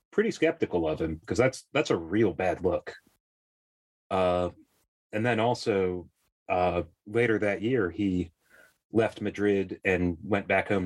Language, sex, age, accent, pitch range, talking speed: English, male, 30-49, American, 95-120 Hz, 145 wpm